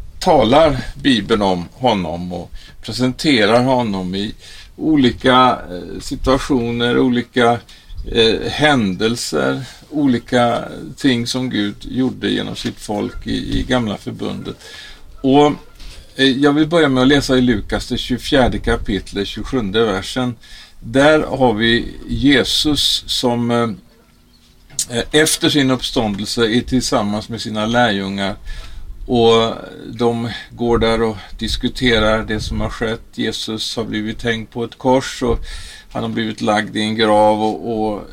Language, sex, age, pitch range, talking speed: Swedish, male, 50-69, 100-125 Hz, 125 wpm